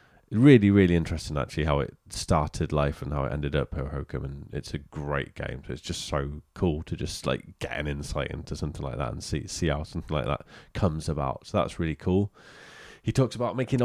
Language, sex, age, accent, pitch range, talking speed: English, male, 20-39, British, 75-100 Hz, 225 wpm